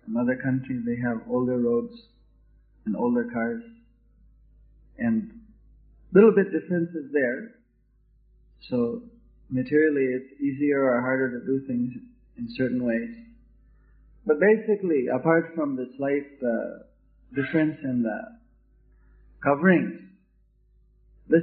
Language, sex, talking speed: English, male, 115 wpm